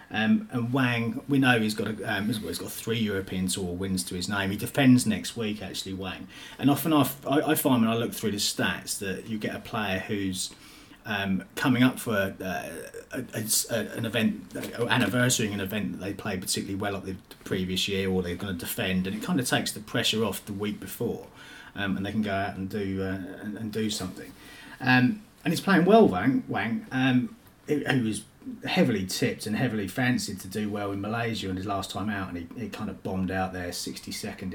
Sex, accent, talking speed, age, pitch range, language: male, British, 220 wpm, 30-49, 95-115 Hz, English